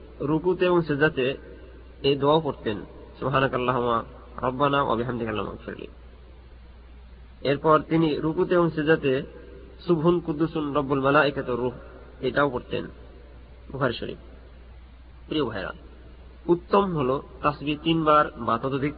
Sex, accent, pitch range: male, native, 120-165 Hz